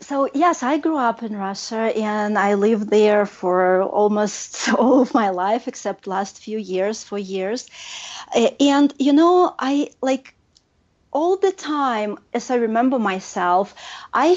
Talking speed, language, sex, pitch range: 150 wpm, English, female, 195-265 Hz